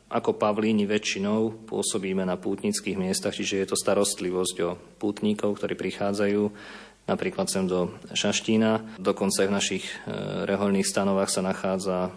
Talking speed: 135 wpm